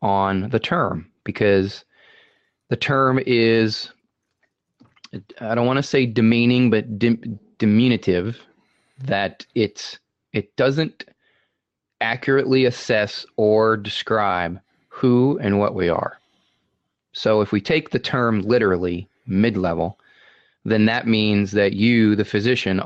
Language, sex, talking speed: English, male, 115 wpm